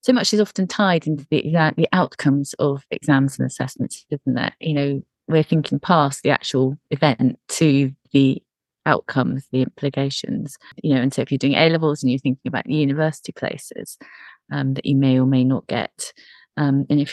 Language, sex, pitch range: English, female, 135-160 Hz